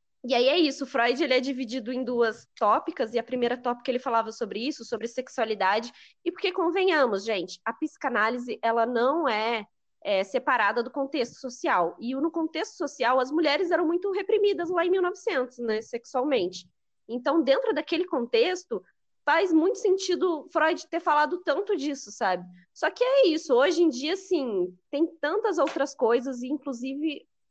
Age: 20-39